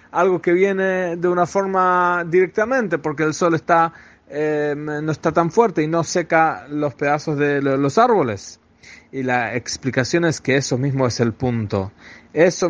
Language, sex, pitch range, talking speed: English, male, 145-185 Hz, 165 wpm